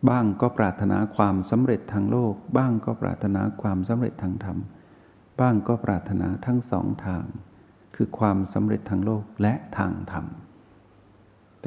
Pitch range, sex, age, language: 100-120 Hz, male, 60-79, Thai